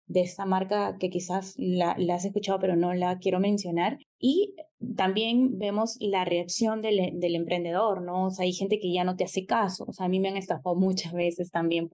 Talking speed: 215 wpm